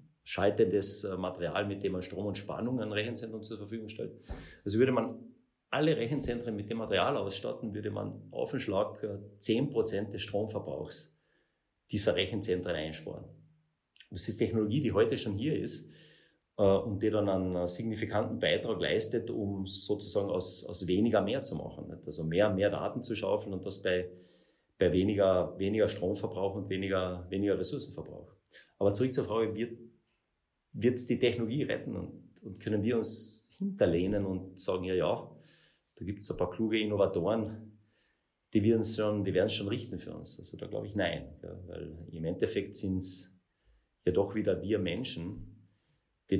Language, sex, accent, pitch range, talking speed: German, male, German, 95-110 Hz, 160 wpm